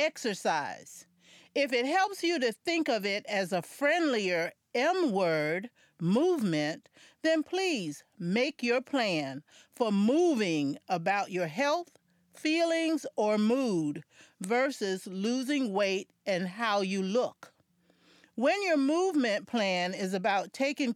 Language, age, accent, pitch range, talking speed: English, 40-59, American, 190-280 Hz, 115 wpm